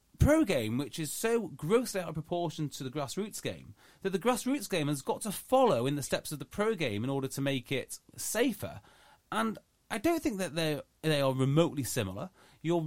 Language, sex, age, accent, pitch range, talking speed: English, male, 30-49, British, 140-205 Hz, 210 wpm